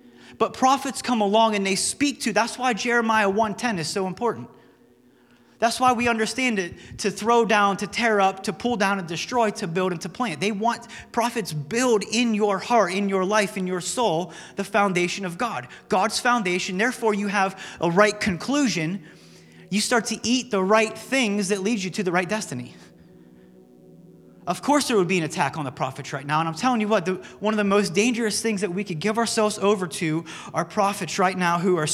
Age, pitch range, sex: 30-49, 175-220 Hz, male